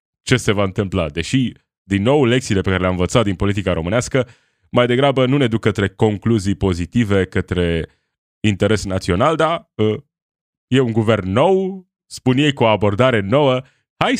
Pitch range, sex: 95-130 Hz, male